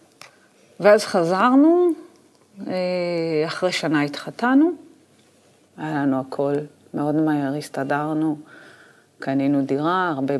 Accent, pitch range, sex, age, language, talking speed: native, 145-220 Hz, female, 40-59, Hebrew, 80 wpm